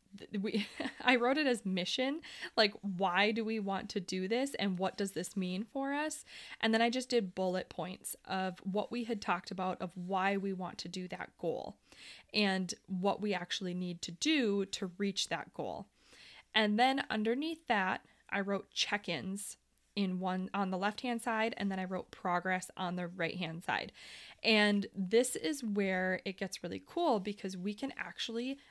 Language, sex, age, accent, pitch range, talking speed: English, female, 20-39, American, 190-230 Hz, 180 wpm